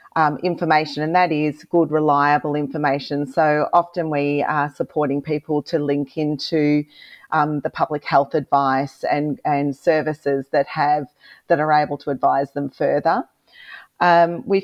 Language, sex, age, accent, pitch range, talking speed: English, female, 40-59, Australian, 150-170 Hz, 150 wpm